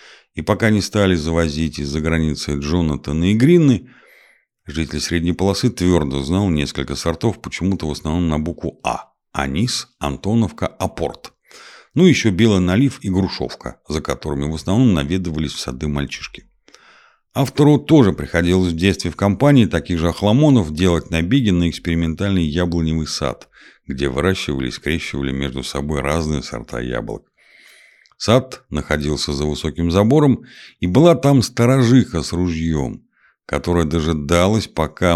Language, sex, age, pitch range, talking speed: Russian, male, 50-69, 75-100 Hz, 135 wpm